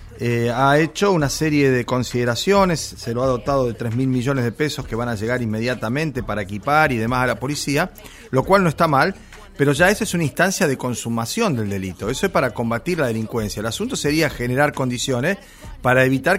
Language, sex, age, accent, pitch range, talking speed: Spanish, male, 40-59, Argentinian, 115-155 Hz, 205 wpm